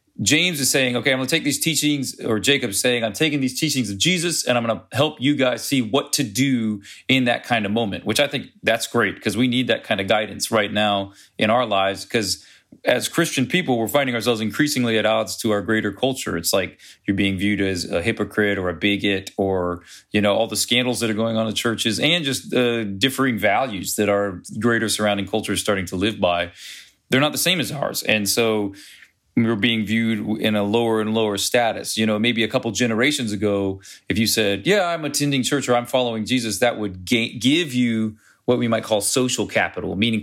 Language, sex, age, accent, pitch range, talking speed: English, male, 30-49, American, 100-125 Hz, 220 wpm